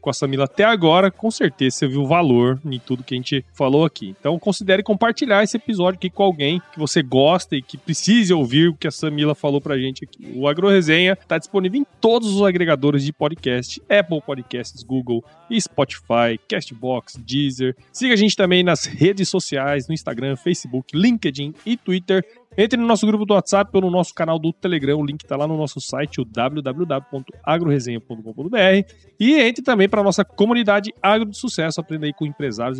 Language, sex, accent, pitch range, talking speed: Portuguese, male, Brazilian, 135-200 Hz, 190 wpm